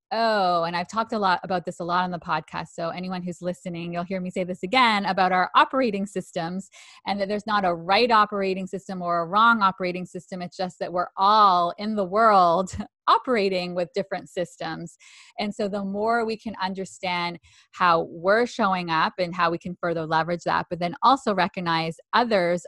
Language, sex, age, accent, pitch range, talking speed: English, female, 20-39, American, 180-230 Hz, 200 wpm